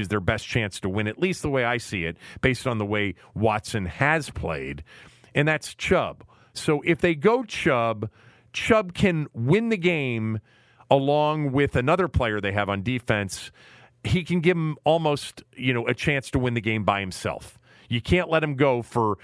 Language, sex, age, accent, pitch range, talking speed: English, male, 40-59, American, 110-145 Hz, 195 wpm